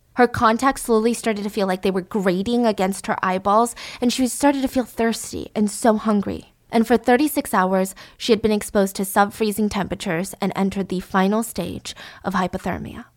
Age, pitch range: 20-39, 195-225 Hz